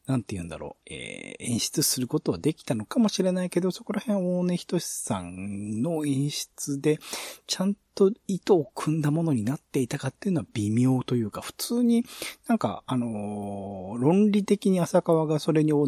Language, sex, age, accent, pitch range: Japanese, male, 40-59, native, 110-165 Hz